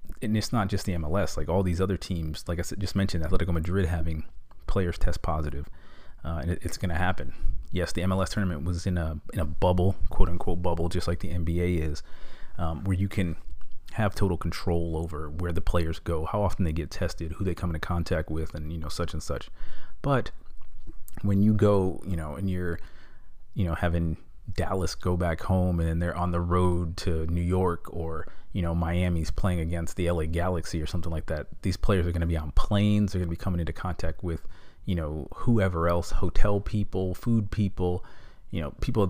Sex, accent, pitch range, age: male, American, 80-95 Hz, 30-49